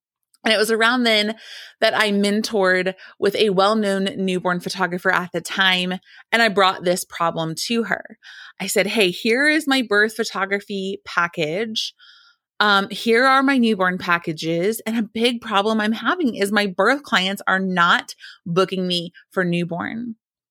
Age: 30-49